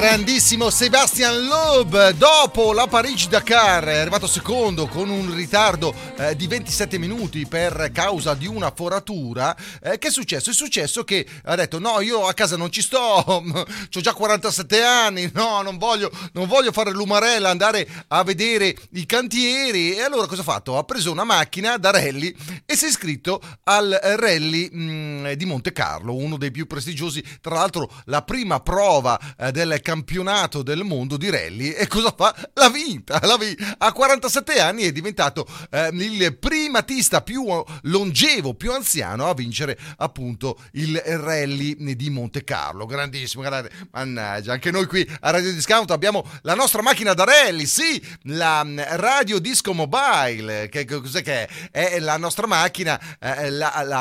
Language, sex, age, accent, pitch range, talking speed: Italian, male, 30-49, native, 150-215 Hz, 165 wpm